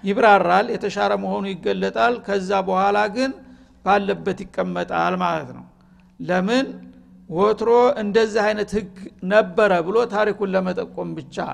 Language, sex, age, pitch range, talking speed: Amharic, male, 60-79, 185-220 Hz, 110 wpm